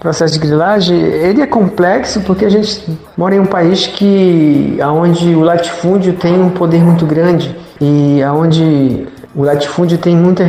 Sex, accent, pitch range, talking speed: male, Brazilian, 145-175 Hz, 155 wpm